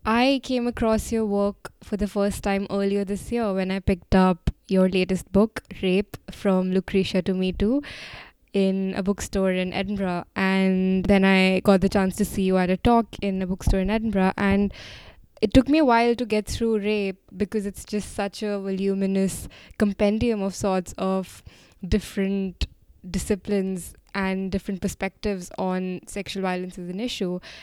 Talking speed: 170 wpm